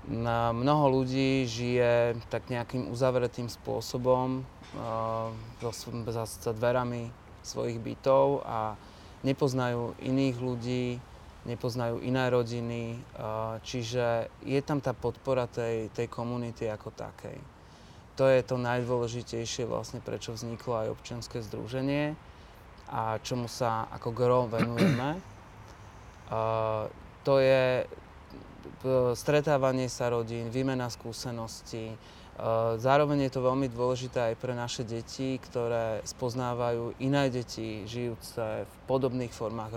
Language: Slovak